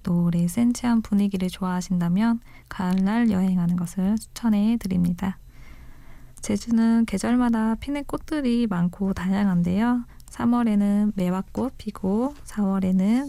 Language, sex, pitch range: Korean, female, 185-230 Hz